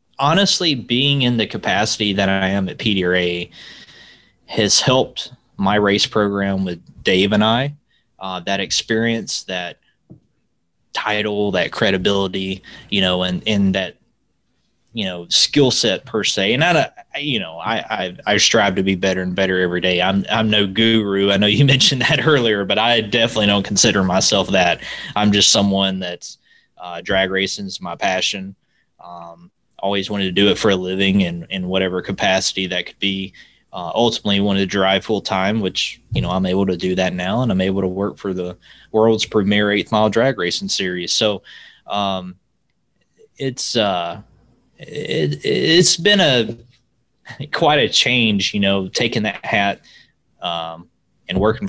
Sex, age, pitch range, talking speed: male, 20-39, 95-110 Hz, 170 wpm